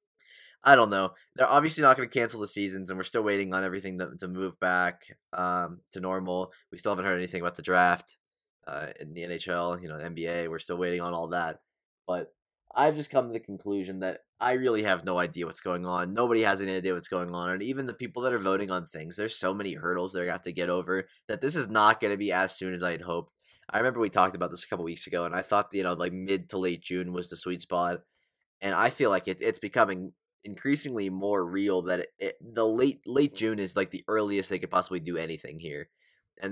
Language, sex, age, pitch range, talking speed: English, male, 20-39, 90-105 Hz, 255 wpm